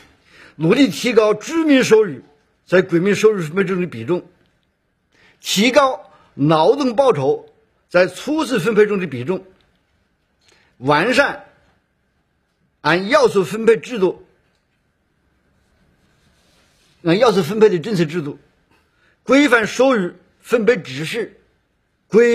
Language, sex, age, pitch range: Chinese, male, 50-69, 155-225 Hz